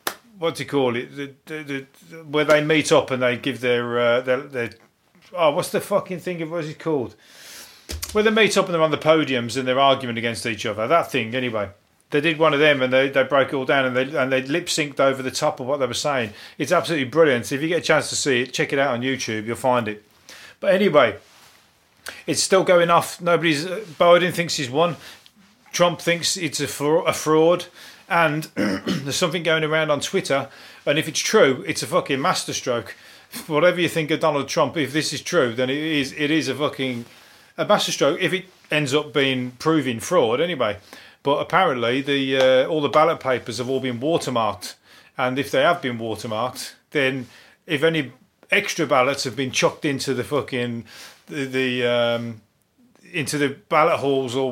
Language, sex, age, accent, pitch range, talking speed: English, male, 30-49, British, 130-160 Hz, 205 wpm